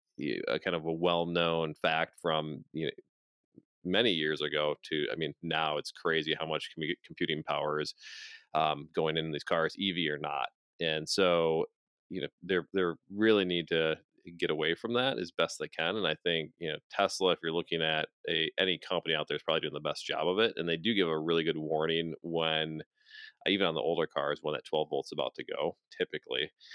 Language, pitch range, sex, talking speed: English, 80-100 Hz, male, 210 wpm